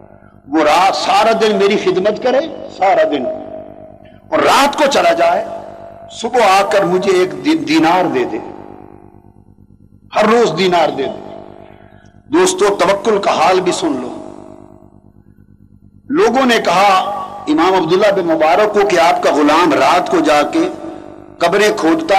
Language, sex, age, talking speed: Urdu, male, 50-69, 145 wpm